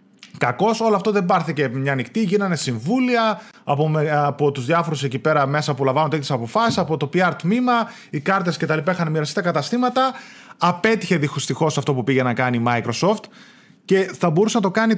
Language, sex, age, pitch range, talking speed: Greek, male, 30-49, 150-210 Hz, 185 wpm